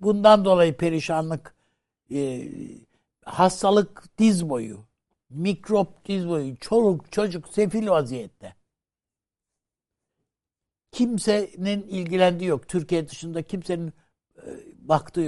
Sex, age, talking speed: male, 60-79, 85 wpm